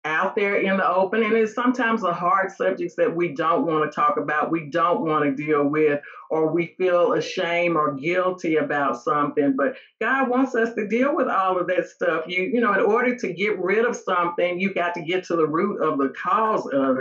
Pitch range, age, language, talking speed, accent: 170-225 Hz, 50-69, English, 225 wpm, American